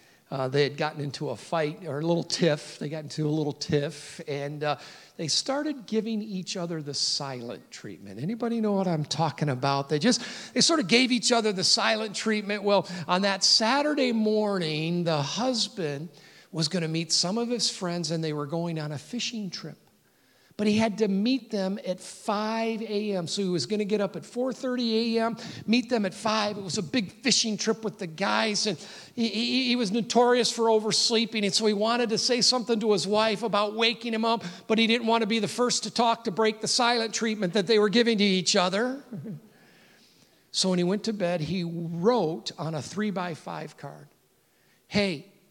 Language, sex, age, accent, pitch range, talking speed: English, male, 50-69, American, 150-220 Hz, 210 wpm